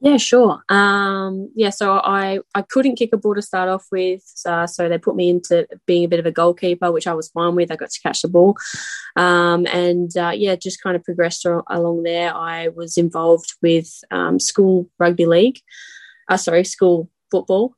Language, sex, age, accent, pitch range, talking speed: English, female, 20-39, Australian, 165-190 Hz, 205 wpm